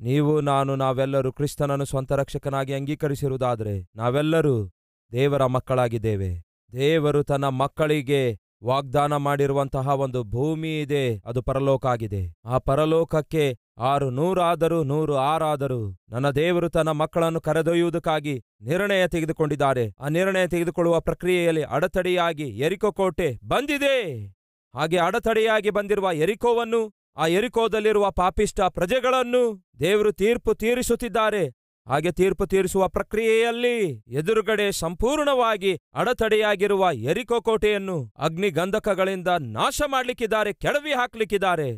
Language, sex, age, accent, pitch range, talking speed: Kannada, male, 30-49, native, 135-185 Hz, 95 wpm